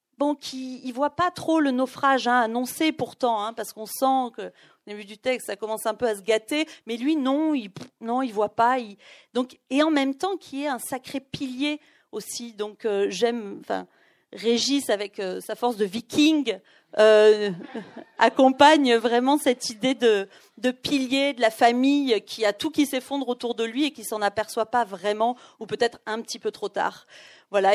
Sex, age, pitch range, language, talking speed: female, 40-59, 210-265 Hz, French, 195 wpm